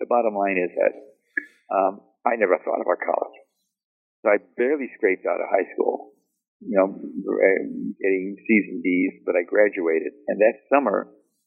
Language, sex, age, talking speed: English, male, 50-69, 160 wpm